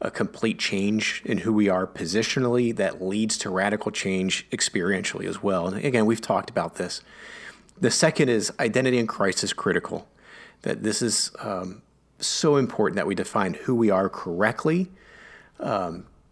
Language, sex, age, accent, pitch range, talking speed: English, male, 30-49, American, 100-125 Hz, 160 wpm